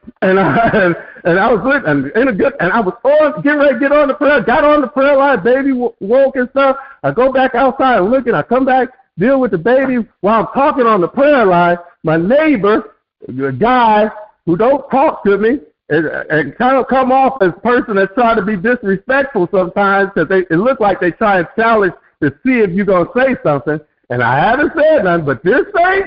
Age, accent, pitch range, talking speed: 50-69, American, 185-275 Hz, 230 wpm